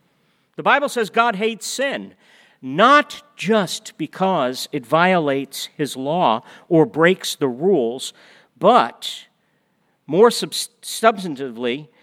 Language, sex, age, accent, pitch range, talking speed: English, male, 50-69, American, 170-235 Hz, 100 wpm